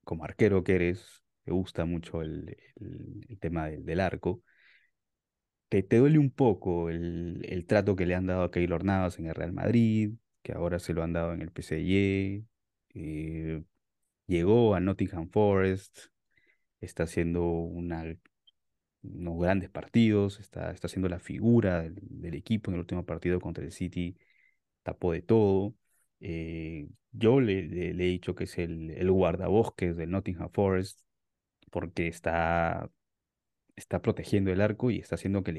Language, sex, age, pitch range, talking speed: Spanish, male, 20-39, 85-105 Hz, 155 wpm